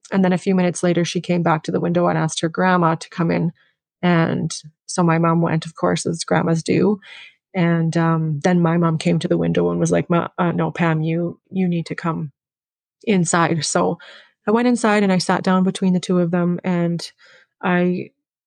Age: 30-49